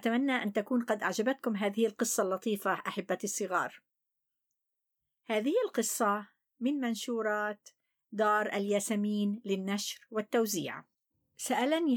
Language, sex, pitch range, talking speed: Arabic, female, 190-240 Hz, 95 wpm